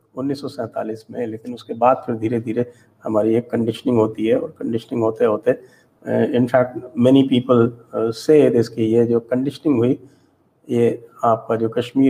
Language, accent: English, Indian